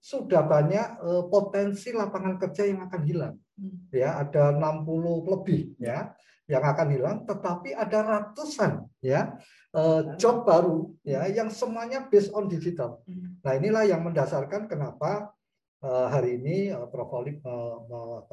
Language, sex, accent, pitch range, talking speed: Indonesian, male, native, 130-195 Hz, 135 wpm